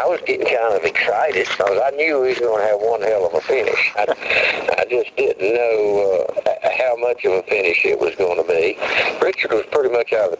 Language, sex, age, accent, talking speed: English, male, 60-79, American, 240 wpm